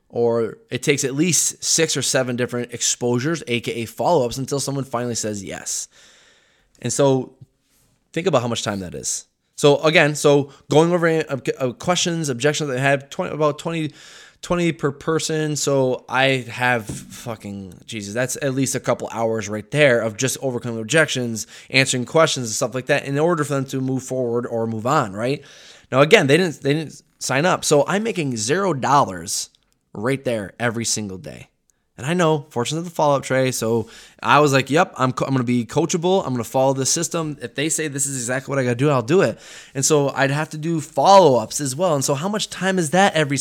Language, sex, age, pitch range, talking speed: English, male, 20-39, 125-155 Hz, 205 wpm